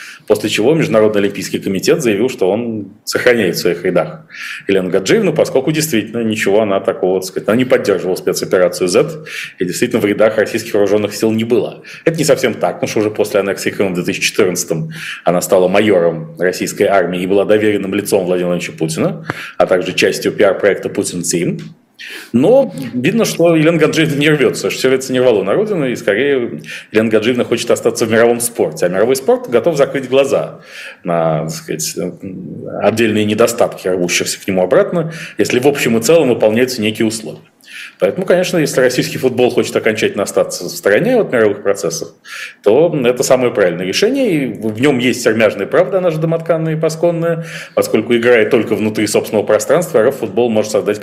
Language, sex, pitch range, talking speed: Russian, male, 100-145 Hz, 175 wpm